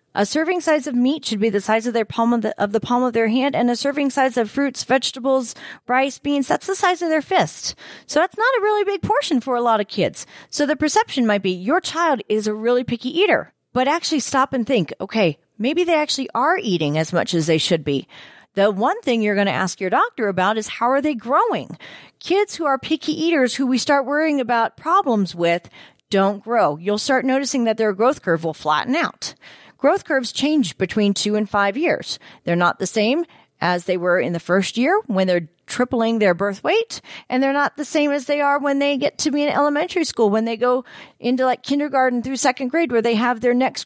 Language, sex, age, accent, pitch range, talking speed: English, female, 40-59, American, 220-295 Hz, 225 wpm